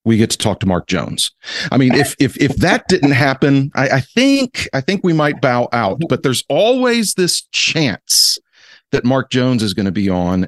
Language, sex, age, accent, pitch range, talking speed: English, male, 40-59, American, 105-135 Hz, 210 wpm